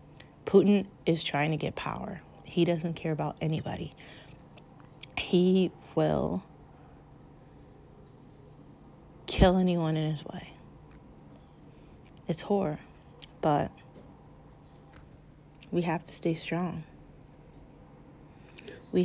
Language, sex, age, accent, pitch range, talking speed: English, female, 30-49, American, 150-175 Hz, 85 wpm